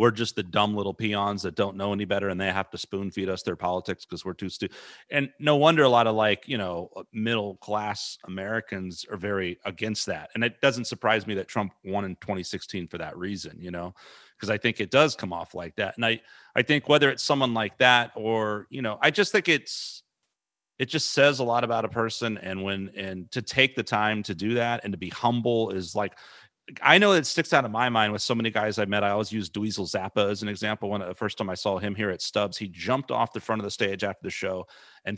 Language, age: English, 30-49